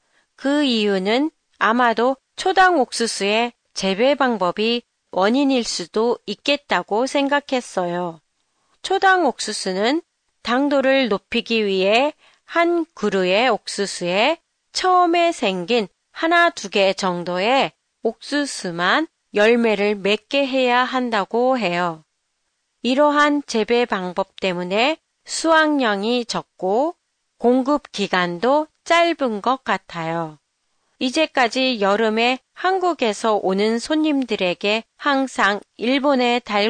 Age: 40-59